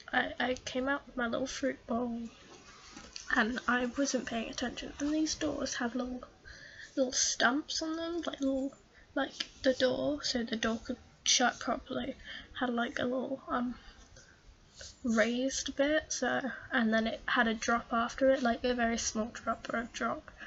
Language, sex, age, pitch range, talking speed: English, female, 10-29, 230-270 Hz, 170 wpm